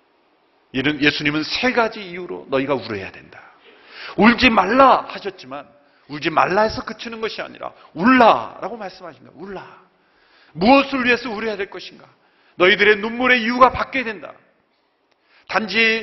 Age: 40-59